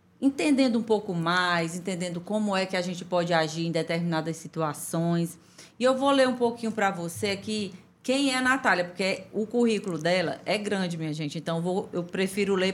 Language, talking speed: Portuguese, 195 wpm